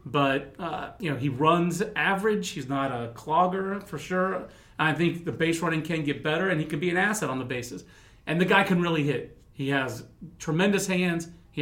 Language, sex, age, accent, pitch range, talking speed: English, male, 40-59, American, 150-205 Hz, 210 wpm